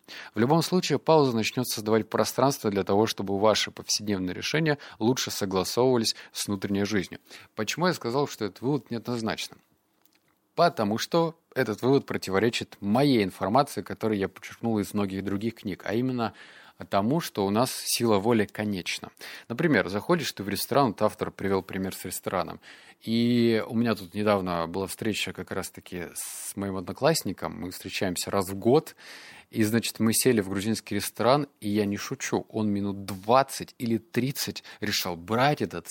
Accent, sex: native, male